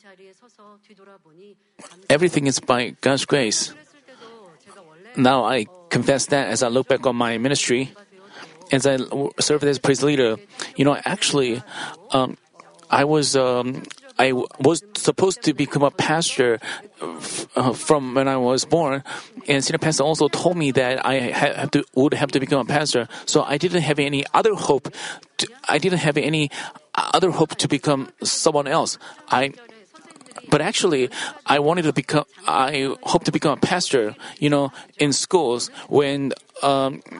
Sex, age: male, 30-49